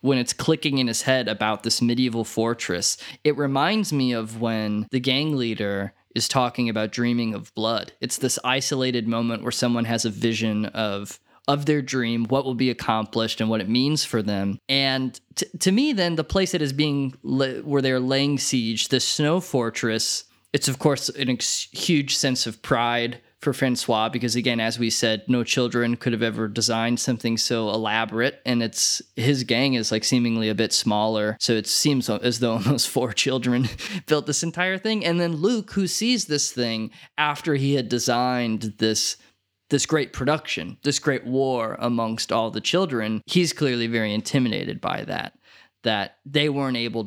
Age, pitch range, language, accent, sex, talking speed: 20-39, 115-140 Hz, English, American, male, 185 wpm